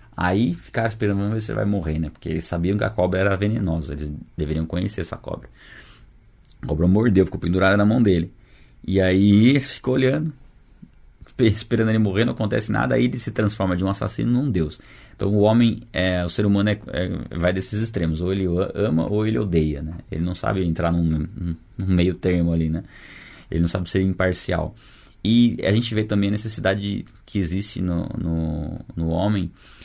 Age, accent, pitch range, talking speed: 20-39, Brazilian, 85-105 Hz, 190 wpm